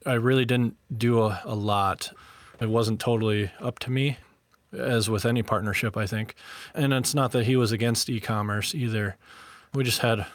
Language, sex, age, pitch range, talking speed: English, male, 20-39, 105-120 Hz, 180 wpm